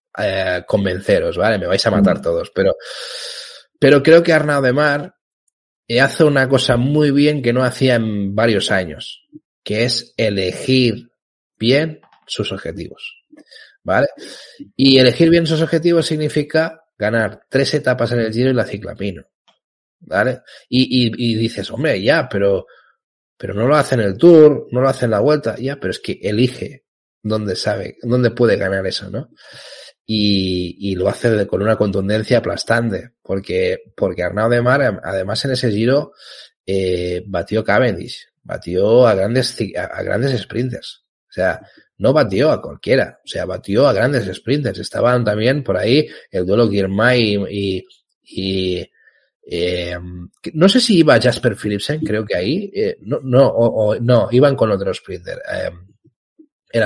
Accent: Spanish